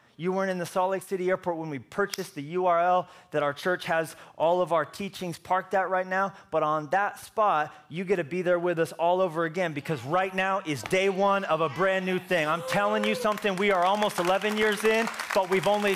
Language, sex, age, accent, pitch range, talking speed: English, male, 30-49, American, 195-280 Hz, 235 wpm